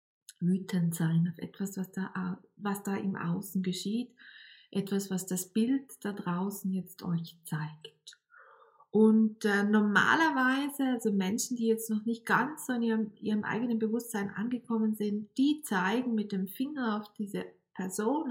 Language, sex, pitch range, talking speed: German, female, 190-240 Hz, 150 wpm